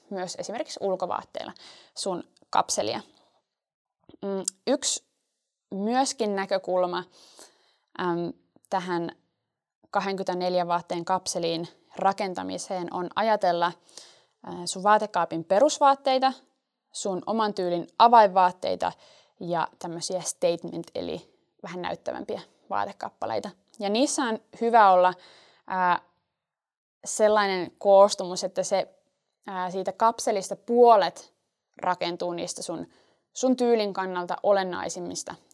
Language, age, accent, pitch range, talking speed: Finnish, 20-39, native, 180-220 Hz, 80 wpm